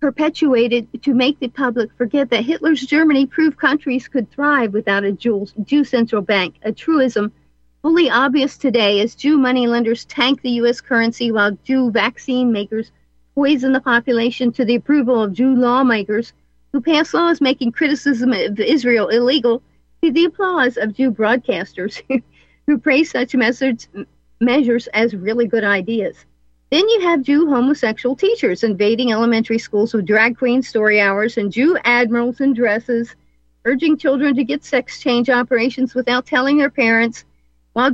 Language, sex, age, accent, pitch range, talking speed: English, female, 50-69, American, 230-275 Hz, 150 wpm